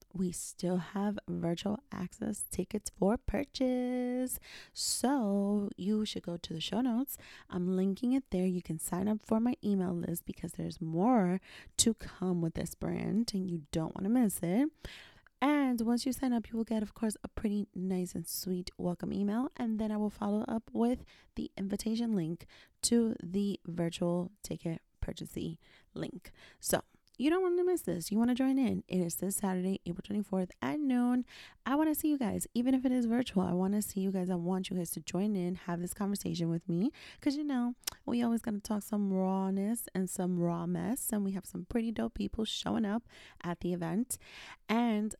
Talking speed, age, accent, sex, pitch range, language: 200 wpm, 30-49, American, female, 185-235 Hz, English